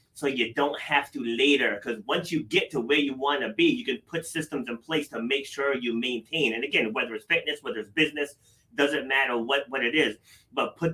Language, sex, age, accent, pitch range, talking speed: English, male, 30-49, American, 120-160 Hz, 235 wpm